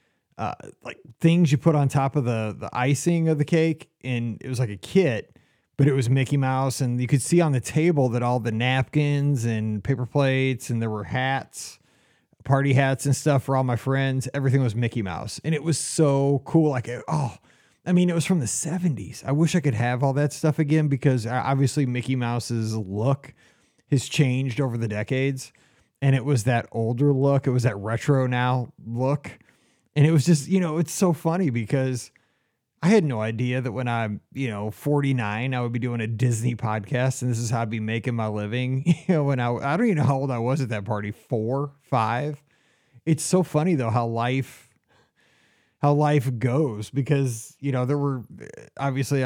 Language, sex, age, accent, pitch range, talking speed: English, male, 30-49, American, 120-145 Hz, 205 wpm